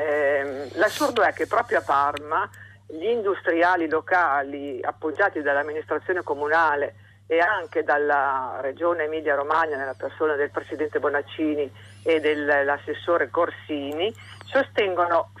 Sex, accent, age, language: female, native, 50-69, Italian